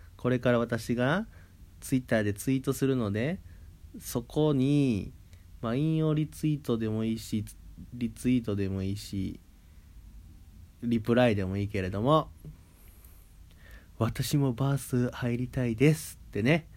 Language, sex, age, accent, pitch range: Japanese, male, 30-49, native, 90-130 Hz